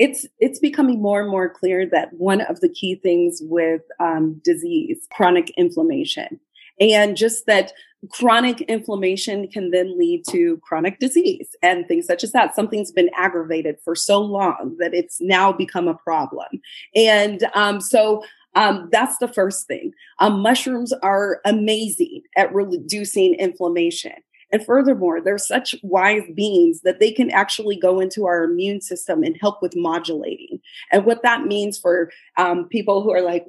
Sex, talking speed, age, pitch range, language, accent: female, 160 wpm, 30-49, 185-260 Hz, English, American